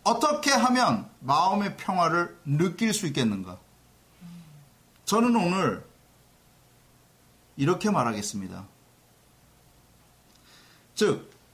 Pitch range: 140-230 Hz